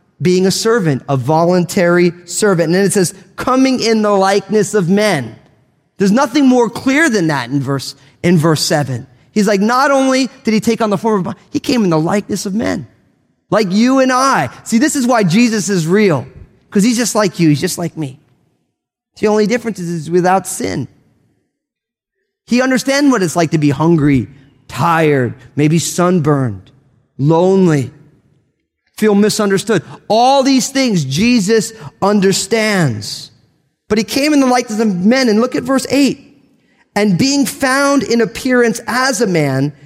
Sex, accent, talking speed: male, American, 170 wpm